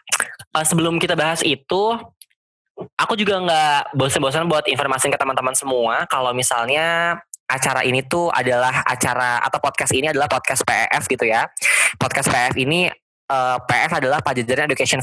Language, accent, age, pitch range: Indonesian, native, 20-39, 125-165 Hz